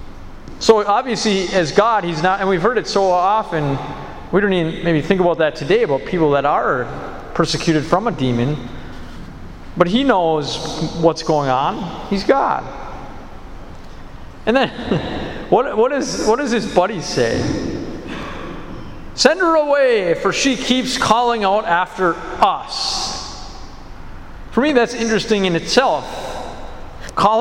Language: English